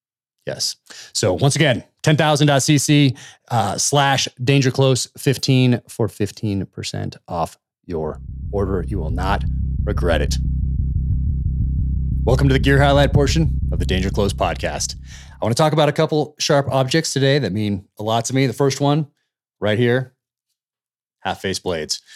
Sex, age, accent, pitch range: male, 30-49, American, 95-125 Hz